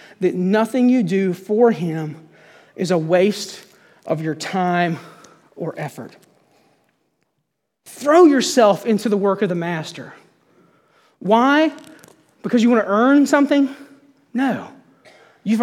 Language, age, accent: English, 30-49, American